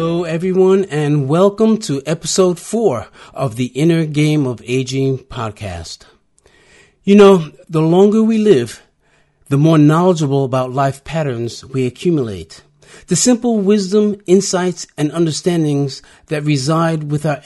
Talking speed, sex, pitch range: 130 wpm, male, 125-170 Hz